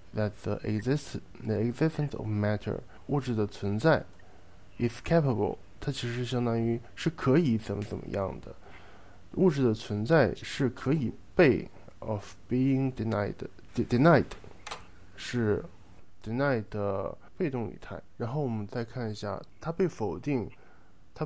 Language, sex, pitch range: Japanese, male, 100-125 Hz